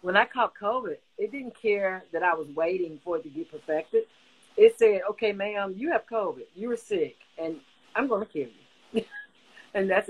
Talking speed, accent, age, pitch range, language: 200 wpm, American, 40-59, 180-260 Hz, English